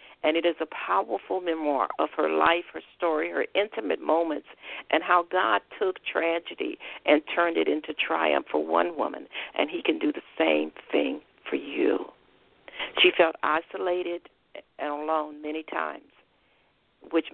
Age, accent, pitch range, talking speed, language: 50-69, American, 155-175 Hz, 150 wpm, English